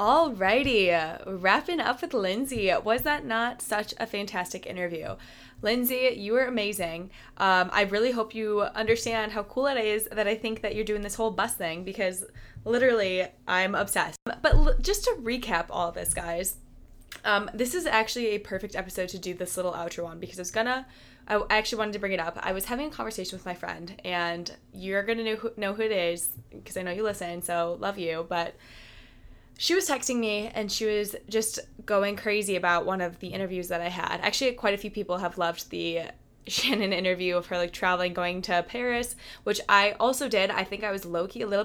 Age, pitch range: 20-39, 180-220 Hz